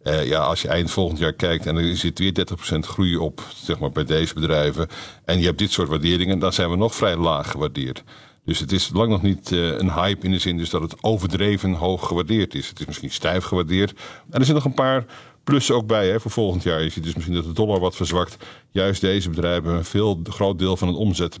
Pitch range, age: 85-100 Hz, 50-69